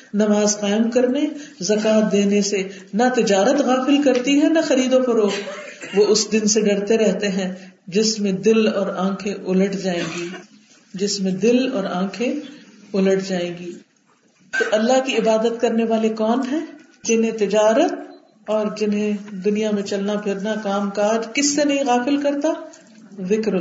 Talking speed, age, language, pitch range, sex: 155 wpm, 40-59, Urdu, 195-260 Hz, female